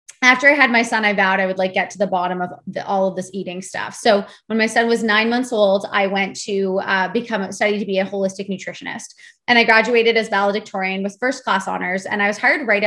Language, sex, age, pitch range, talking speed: English, female, 20-39, 195-240 Hz, 255 wpm